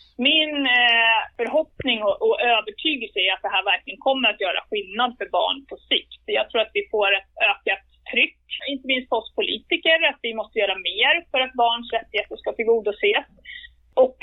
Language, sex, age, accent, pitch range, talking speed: Swedish, female, 30-49, native, 210-275 Hz, 180 wpm